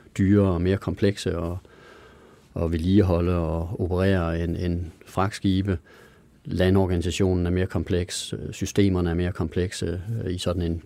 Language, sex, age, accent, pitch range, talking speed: Danish, male, 40-59, native, 85-105 Hz, 125 wpm